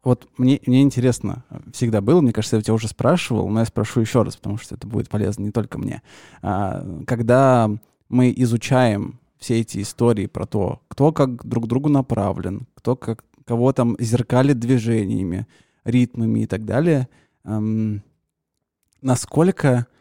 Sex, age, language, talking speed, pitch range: male, 20-39, Russian, 145 wpm, 110-130 Hz